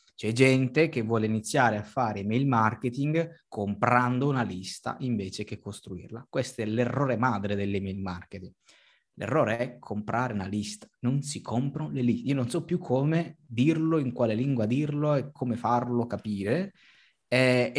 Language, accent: Italian, native